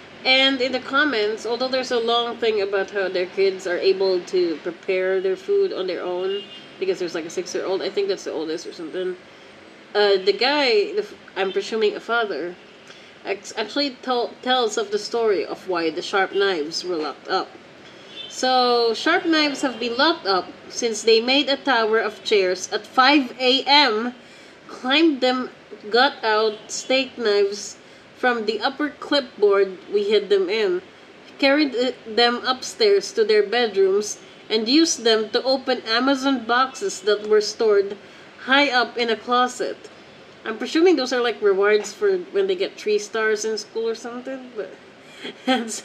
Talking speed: 160 wpm